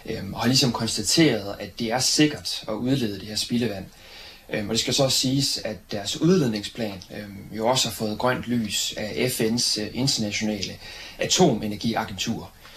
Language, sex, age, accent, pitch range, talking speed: Danish, male, 30-49, native, 105-130 Hz, 145 wpm